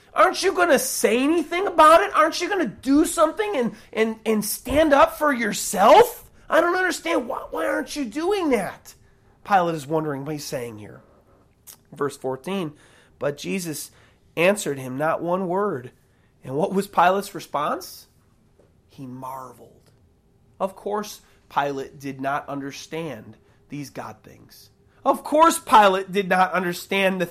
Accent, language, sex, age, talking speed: American, English, male, 30-49, 150 wpm